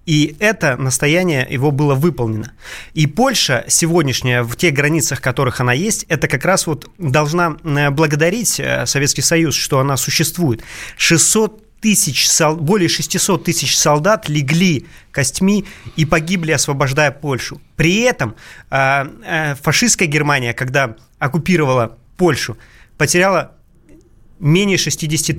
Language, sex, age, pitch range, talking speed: Russian, male, 30-49, 135-175 Hz, 115 wpm